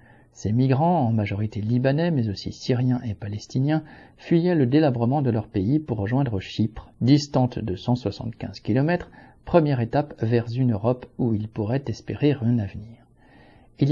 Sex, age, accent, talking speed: male, 50-69, French, 150 wpm